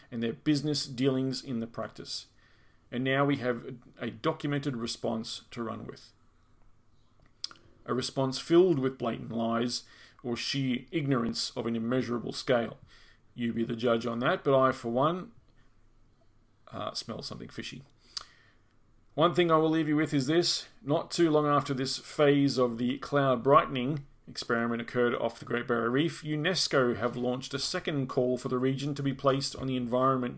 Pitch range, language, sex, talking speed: 115-140 Hz, English, male, 170 wpm